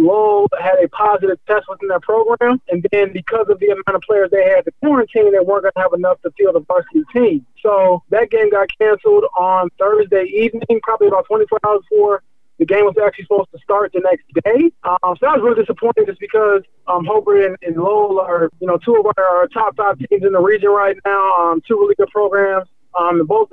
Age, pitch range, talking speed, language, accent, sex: 20-39, 190-245 Hz, 225 wpm, English, American, male